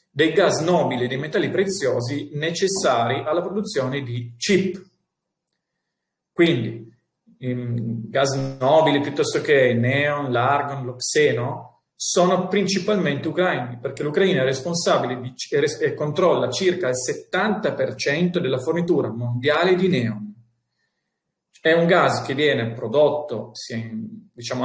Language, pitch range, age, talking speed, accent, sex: Italian, 125-175 Hz, 40-59, 125 wpm, native, male